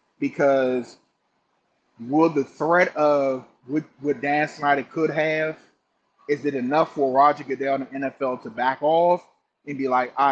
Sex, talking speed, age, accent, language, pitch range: male, 150 wpm, 20-39, American, English, 140-180 Hz